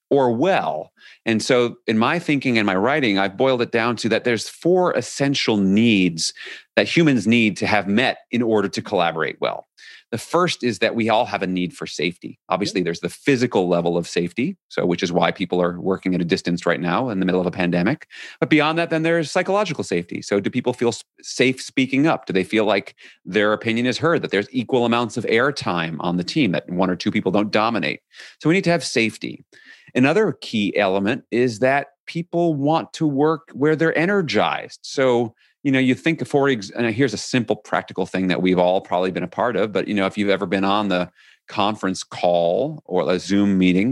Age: 40-59